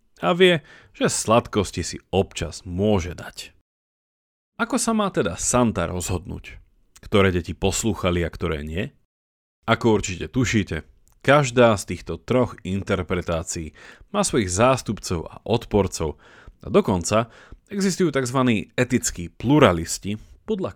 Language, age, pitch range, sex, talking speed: Slovak, 30-49, 85-125 Hz, male, 115 wpm